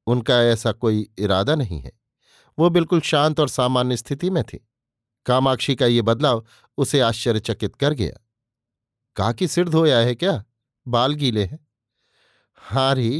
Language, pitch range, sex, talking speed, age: Hindi, 120-150 Hz, male, 140 wpm, 50-69